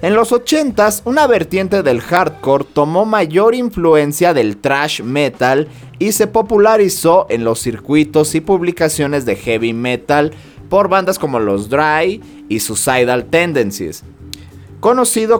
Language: Spanish